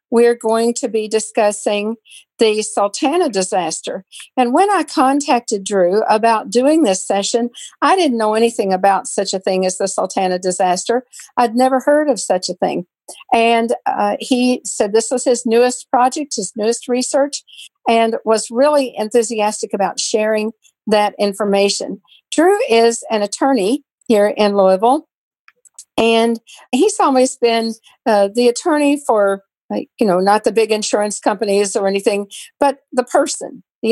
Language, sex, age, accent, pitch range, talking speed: English, female, 50-69, American, 210-255 Hz, 150 wpm